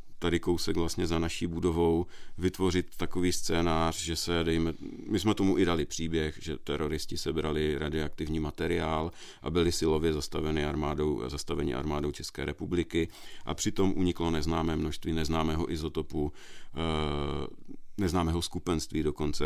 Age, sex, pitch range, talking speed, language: 40-59, male, 75-85 Hz, 130 wpm, Czech